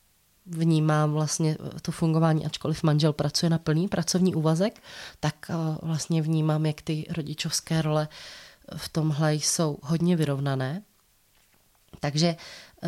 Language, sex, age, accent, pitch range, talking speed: Czech, female, 20-39, native, 150-170 Hz, 110 wpm